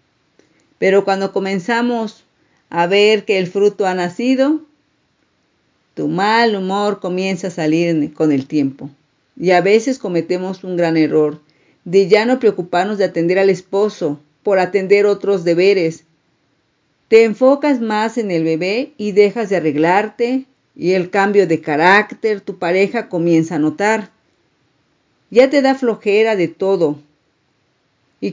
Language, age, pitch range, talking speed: Spanish, 40-59, 170-225 Hz, 140 wpm